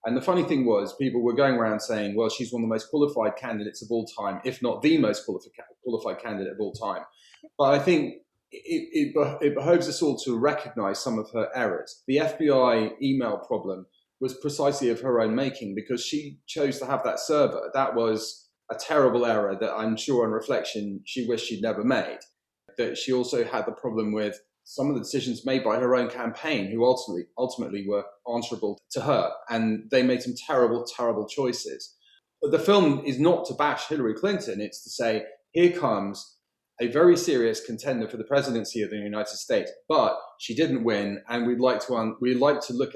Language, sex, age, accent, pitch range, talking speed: English, male, 30-49, British, 110-145 Hz, 205 wpm